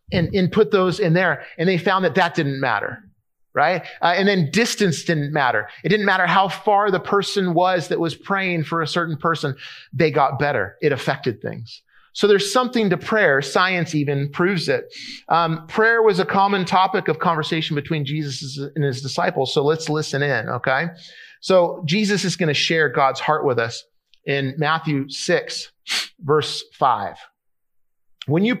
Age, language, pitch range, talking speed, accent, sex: 30-49, English, 155-210 Hz, 175 wpm, American, male